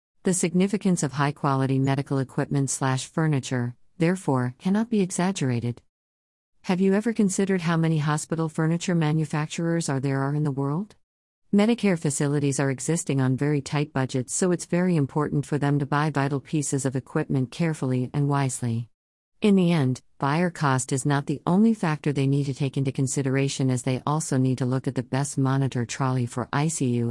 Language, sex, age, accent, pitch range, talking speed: English, female, 50-69, American, 130-155 Hz, 175 wpm